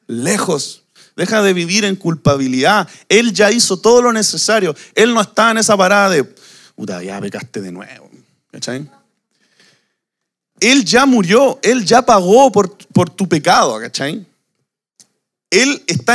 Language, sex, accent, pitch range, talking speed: Spanish, male, Venezuelan, 150-220 Hz, 140 wpm